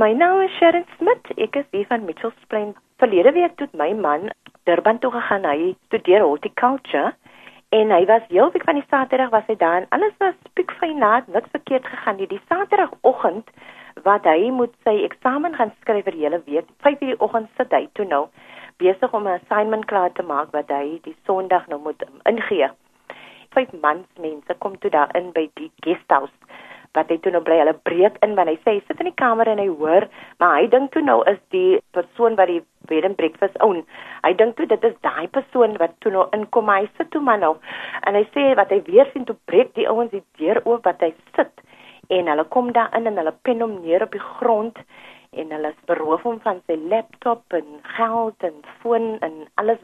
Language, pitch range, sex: English, 180-255 Hz, female